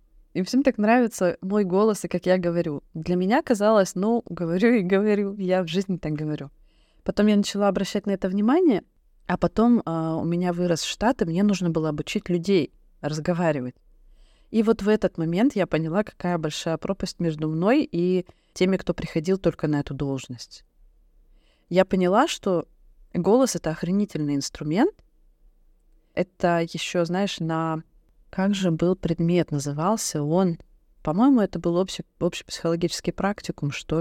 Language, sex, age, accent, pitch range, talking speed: Russian, female, 20-39, native, 160-195 Hz, 150 wpm